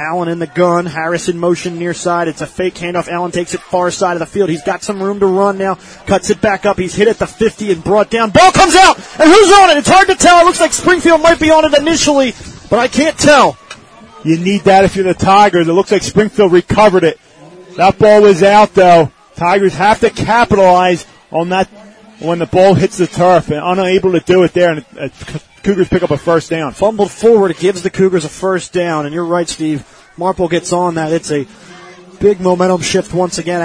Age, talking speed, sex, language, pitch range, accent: 30-49, 230 wpm, male, English, 170-195 Hz, American